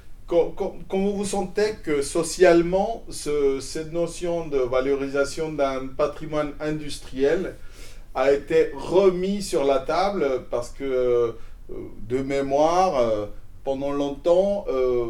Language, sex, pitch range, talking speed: French, male, 125-160 Hz, 105 wpm